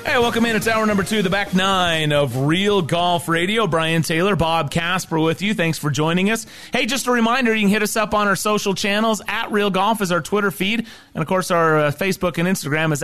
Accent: American